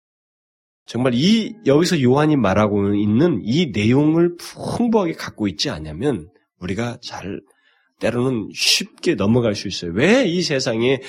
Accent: native